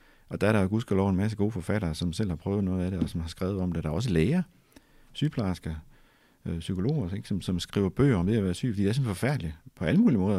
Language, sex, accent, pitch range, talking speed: Danish, male, native, 90-115 Hz, 275 wpm